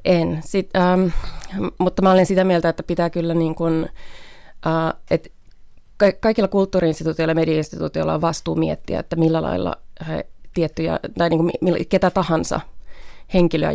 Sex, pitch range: female, 160-170 Hz